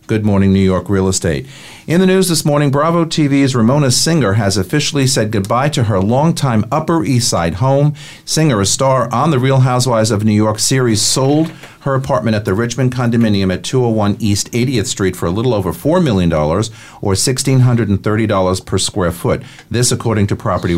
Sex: male